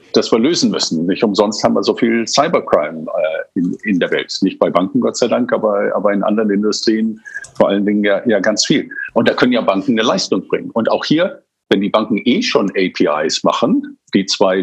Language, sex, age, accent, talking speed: German, male, 50-69, German, 220 wpm